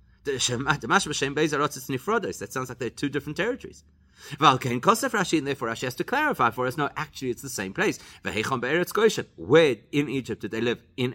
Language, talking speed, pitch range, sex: English, 145 wpm, 125-165 Hz, male